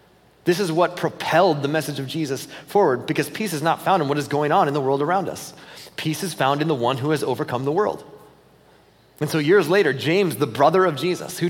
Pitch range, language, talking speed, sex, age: 140-170 Hz, English, 235 wpm, male, 30-49